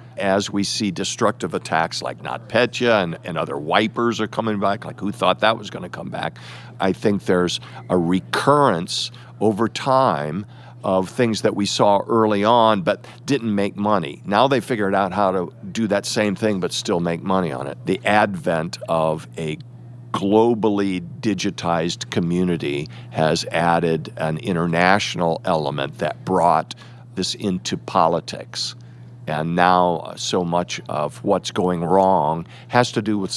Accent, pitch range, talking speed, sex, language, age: American, 85-120 Hz, 155 wpm, male, English, 50-69